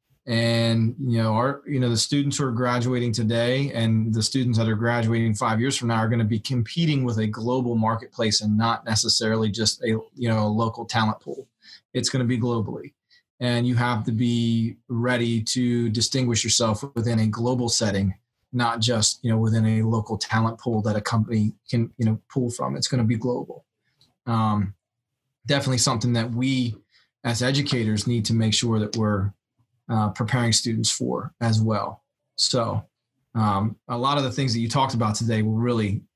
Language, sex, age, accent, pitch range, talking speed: English, male, 20-39, American, 110-125 Hz, 190 wpm